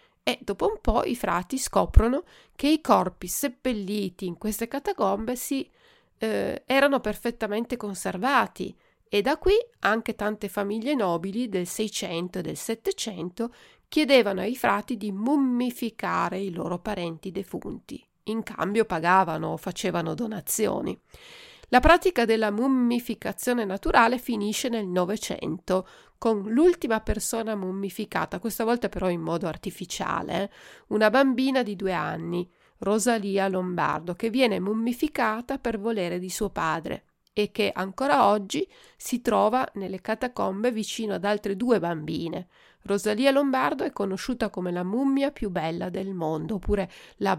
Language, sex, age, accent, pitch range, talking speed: Italian, female, 40-59, native, 185-245 Hz, 135 wpm